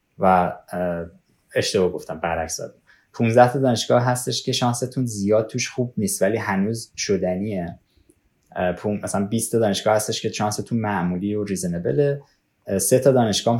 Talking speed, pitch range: 130 wpm, 95-125 Hz